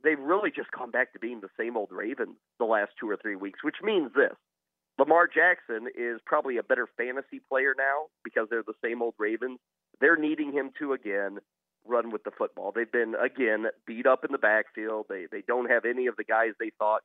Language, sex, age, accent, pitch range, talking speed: English, male, 40-59, American, 115-145 Hz, 220 wpm